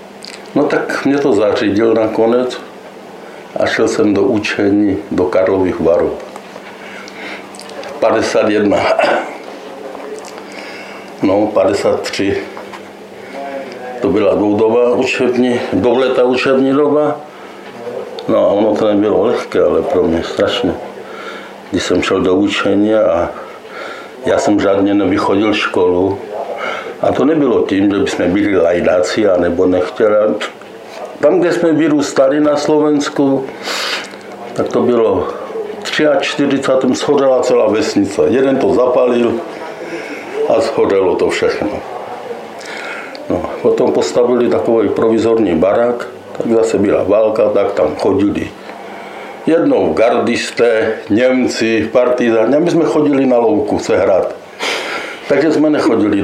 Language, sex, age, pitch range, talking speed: Slovak, male, 60-79, 115-165 Hz, 110 wpm